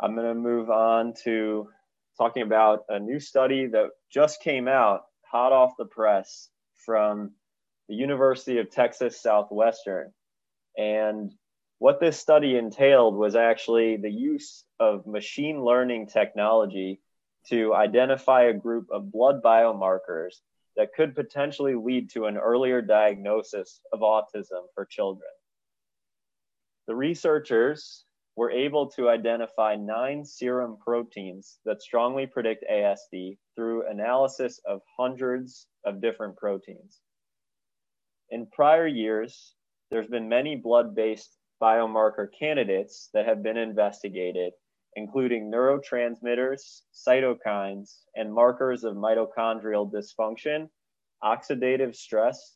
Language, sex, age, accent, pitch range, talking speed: English, male, 20-39, American, 110-135 Hz, 115 wpm